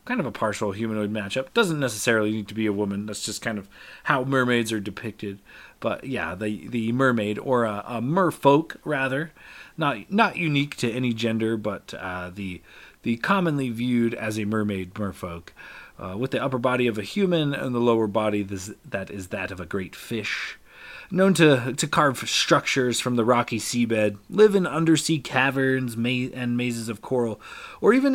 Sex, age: male, 30-49